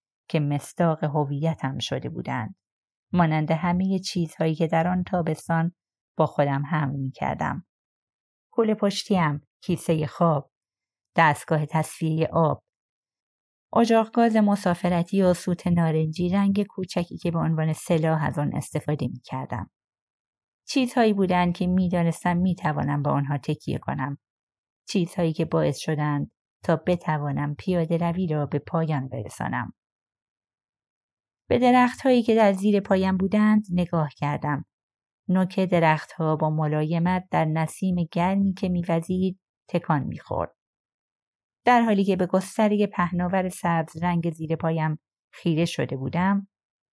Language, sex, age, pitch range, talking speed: Persian, female, 30-49, 150-185 Hz, 125 wpm